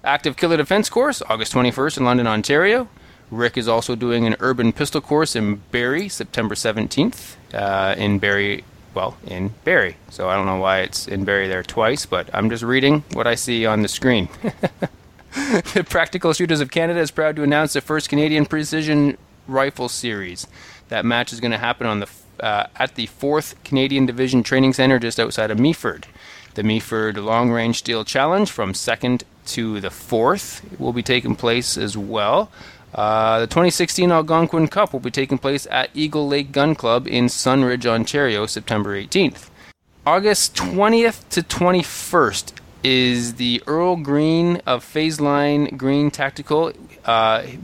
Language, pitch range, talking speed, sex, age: English, 105-140 Hz, 165 wpm, male, 20-39